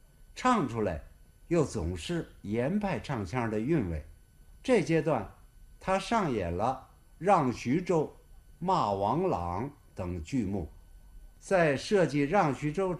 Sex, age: male, 60-79